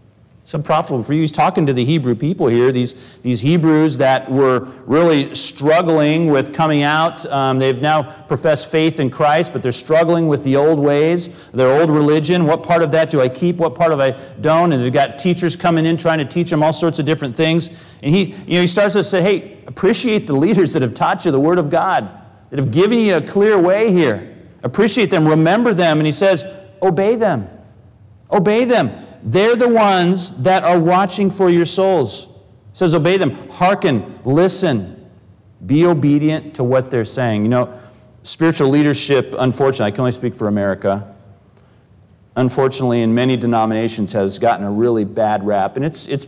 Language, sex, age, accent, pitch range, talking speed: English, male, 40-59, American, 120-165 Hz, 195 wpm